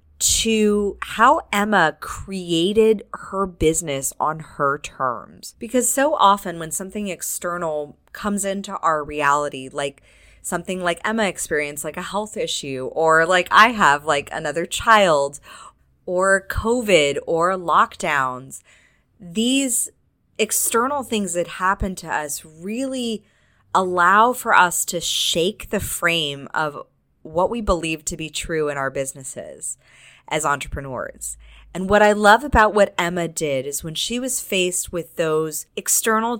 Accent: American